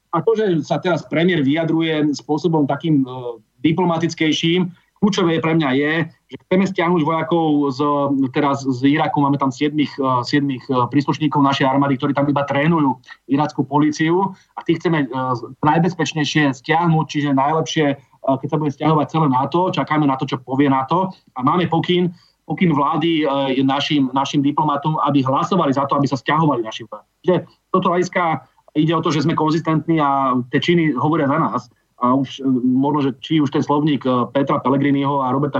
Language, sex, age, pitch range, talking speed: Czech, male, 30-49, 135-160 Hz, 170 wpm